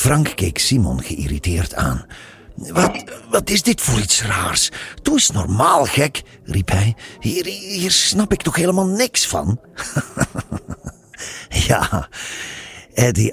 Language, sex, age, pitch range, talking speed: Dutch, male, 50-69, 85-120 Hz, 125 wpm